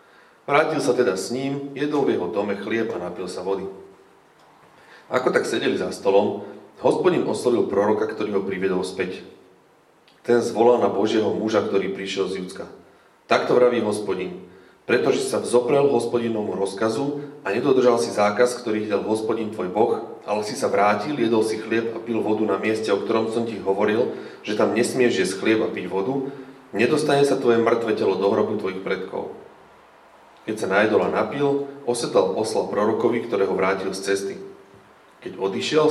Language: Slovak